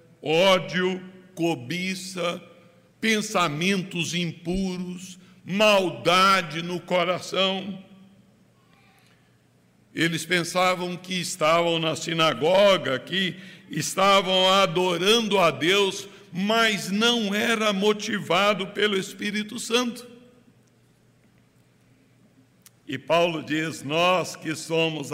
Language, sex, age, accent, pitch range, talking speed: Portuguese, male, 60-79, Brazilian, 175-220 Hz, 75 wpm